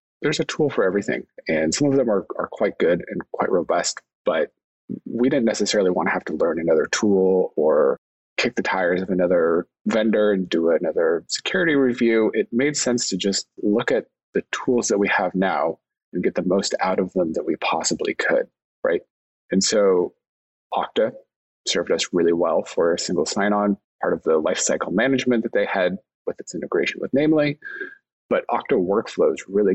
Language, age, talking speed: English, 30-49, 185 wpm